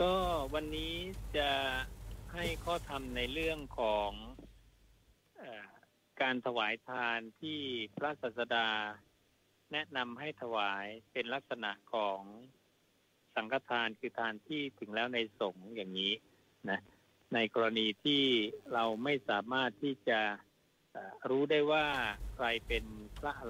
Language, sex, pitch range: Thai, male, 105-135 Hz